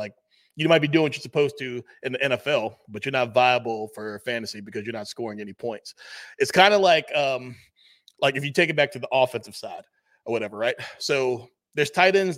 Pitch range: 120-145 Hz